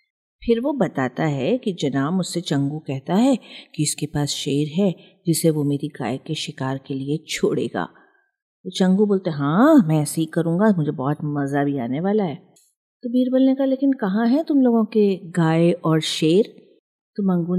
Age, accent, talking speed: 50-69, native, 185 wpm